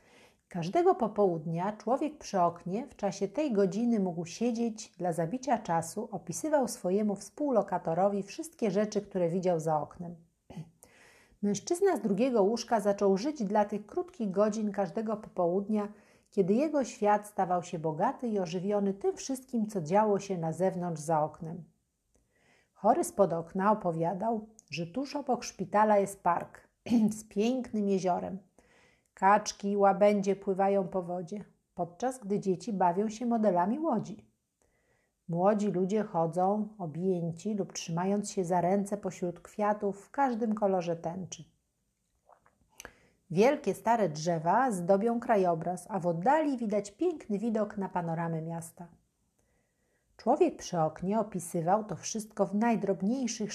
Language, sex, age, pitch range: Polish, female, 50-69, 180-220 Hz